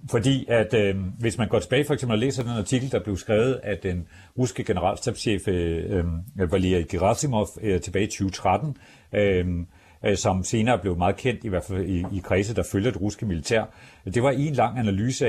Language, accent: Danish, native